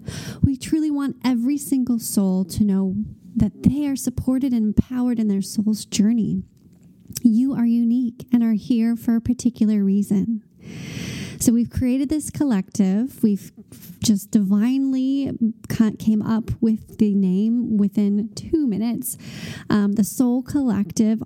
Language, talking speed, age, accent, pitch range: English, 140 wpm, 30-49, American, 210-255 Hz